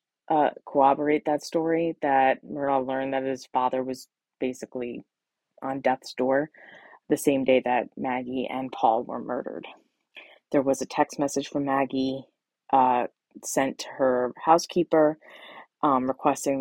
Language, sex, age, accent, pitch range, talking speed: English, female, 20-39, American, 130-145 Hz, 135 wpm